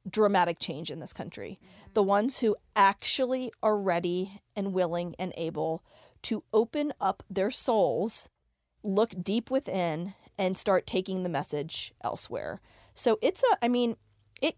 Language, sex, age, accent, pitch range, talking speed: English, female, 40-59, American, 175-215 Hz, 145 wpm